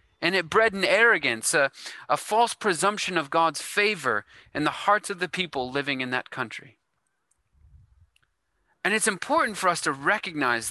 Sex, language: male, English